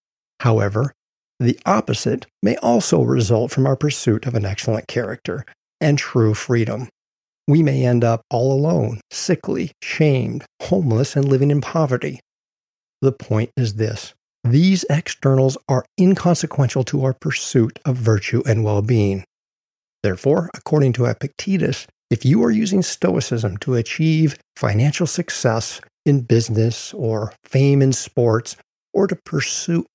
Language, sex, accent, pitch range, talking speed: English, male, American, 110-145 Hz, 130 wpm